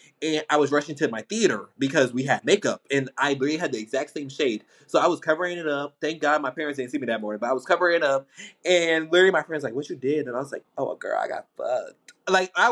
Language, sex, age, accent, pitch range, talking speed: English, male, 20-39, American, 130-175 Hz, 280 wpm